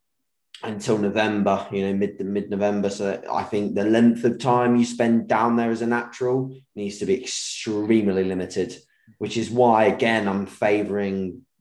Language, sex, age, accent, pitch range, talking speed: English, male, 20-39, British, 95-115 Hz, 165 wpm